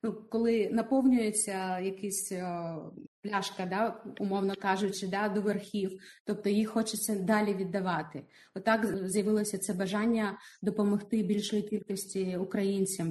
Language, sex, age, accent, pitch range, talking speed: Ukrainian, female, 20-39, native, 195-230 Hz, 110 wpm